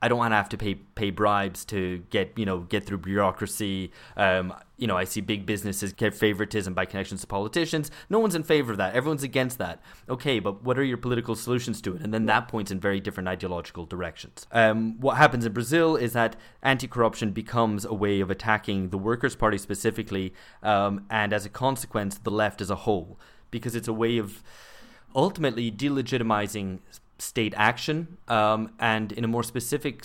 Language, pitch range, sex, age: English, 95-115 Hz, male, 20-39